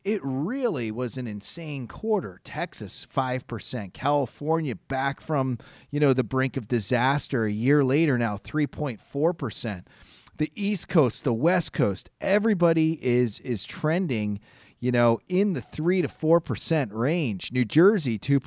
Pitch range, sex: 120-165 Hz, male